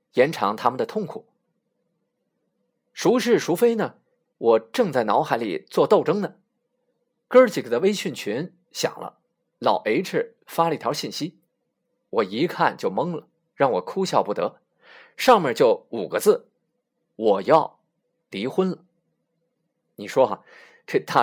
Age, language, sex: 20-39, Chinese, male